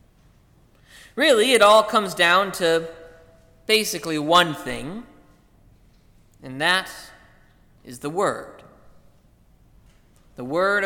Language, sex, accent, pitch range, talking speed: English, male, American, 155-210 Hz, 90 wpm